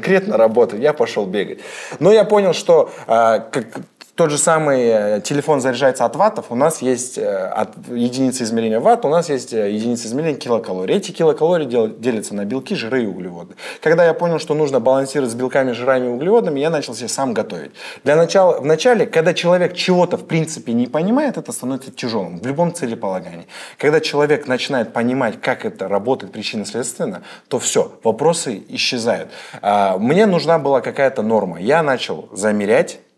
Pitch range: 125-195 Hz